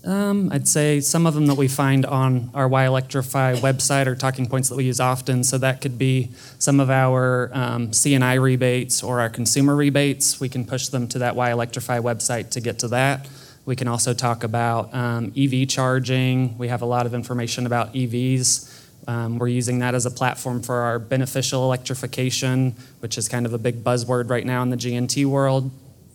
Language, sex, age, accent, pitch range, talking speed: English, male, 20-39, American, 125-130 Hz, 200 wpm